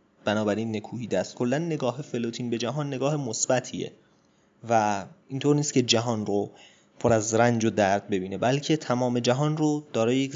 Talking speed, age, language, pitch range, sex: 160 wpm, 20-39, Persian, 110-145 Hz, male